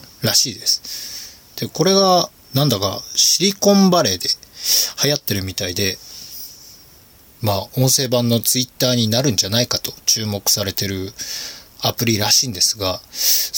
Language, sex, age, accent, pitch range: Japanese, male, 20-39, native, 100-150 Hz